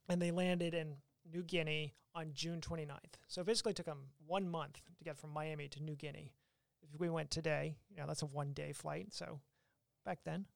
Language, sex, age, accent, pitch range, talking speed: English, male, 30-49, American, 145-170 Hz, 205 wpm